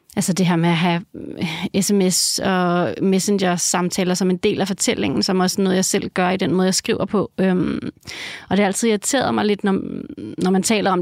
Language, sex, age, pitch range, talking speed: Danish, female, 30-49, 185-215 Hz, 220 wpm